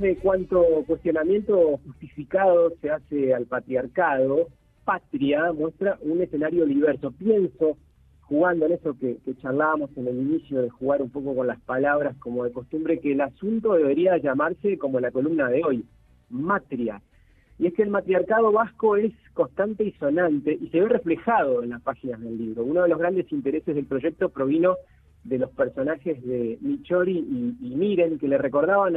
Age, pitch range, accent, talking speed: 40-59, 130-180 Hz, Argentinian, 170 wpm